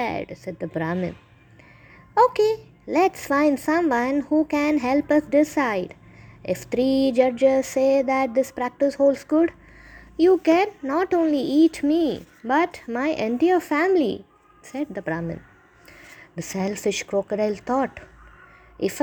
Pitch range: 190-275 Hz